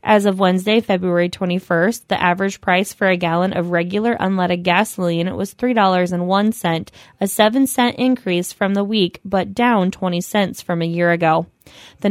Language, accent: English, American